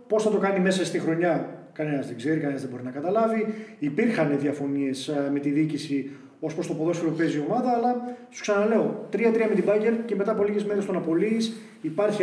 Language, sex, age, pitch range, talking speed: Greek, male, 30-49, 155-215 Hz, 210 wpm